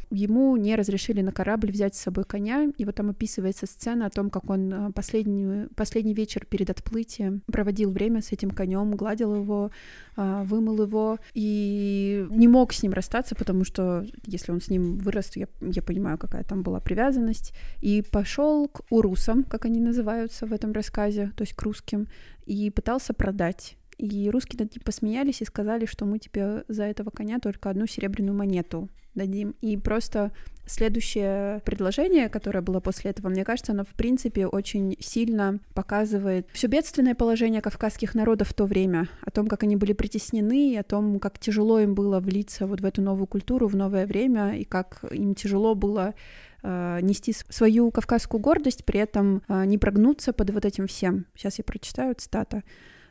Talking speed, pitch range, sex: 175 wpm, 195-225 Hz, female